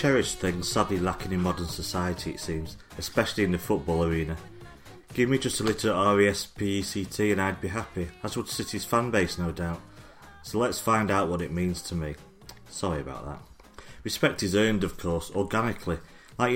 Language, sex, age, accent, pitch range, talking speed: English, male, 30-49, British, 85-105 Hz, 180 wpm